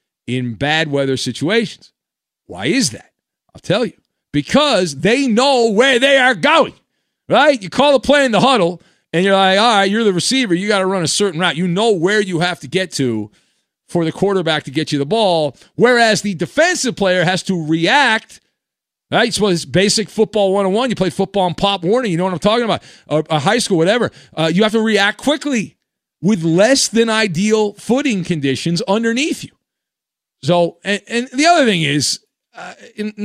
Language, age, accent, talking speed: English, 40-59, American, 195 wpm